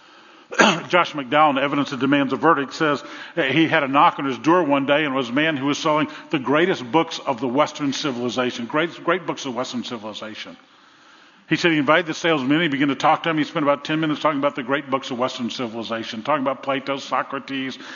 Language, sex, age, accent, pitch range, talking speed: English, male, 50-69, American, 135-180 Hz, 225 wpm